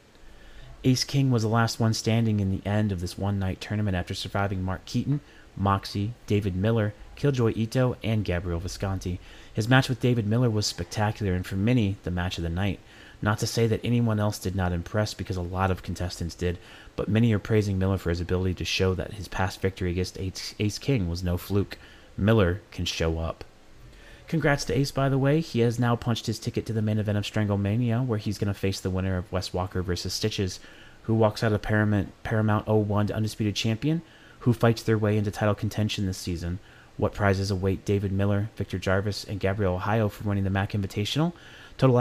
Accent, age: American, 30-49